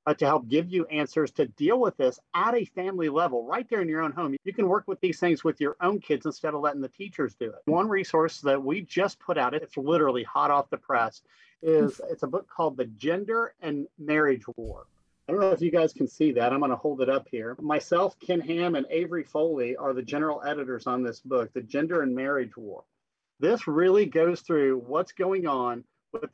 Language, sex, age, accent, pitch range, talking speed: English, male, 40-59, American, 140-180 Hz, 230 wpm